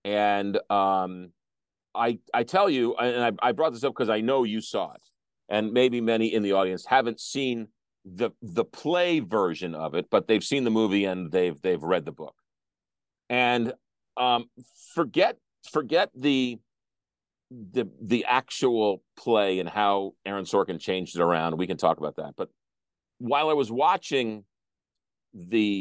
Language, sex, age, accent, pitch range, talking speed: English, male, 40-59, American, 95-125 Hz, 165 wpm